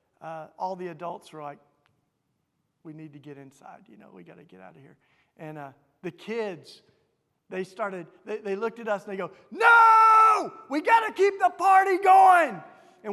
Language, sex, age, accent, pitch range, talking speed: English, male, 50-69, American, 160-215 Hz, 195 wpm